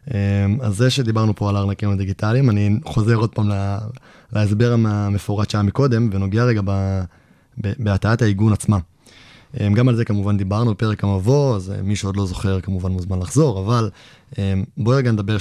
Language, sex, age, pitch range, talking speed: Hebrew, male, 20-39, 100-120 Hz, 165 wpm